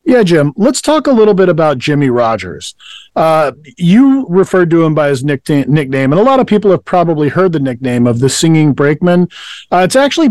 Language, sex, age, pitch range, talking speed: English, male, 40-59, 140-180 Hz, 200 wpm